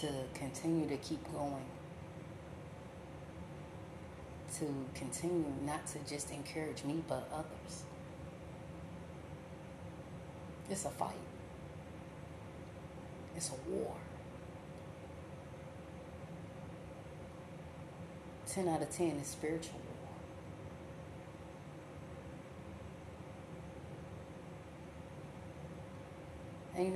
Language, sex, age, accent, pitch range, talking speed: English, female, 30-49, American, 135-165 Hz, 60 wpm